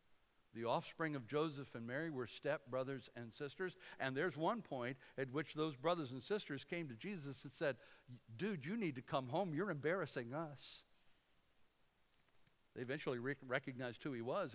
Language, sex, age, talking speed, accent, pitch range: English, male, 60-79, 170 wpm, American, 115-145 Hz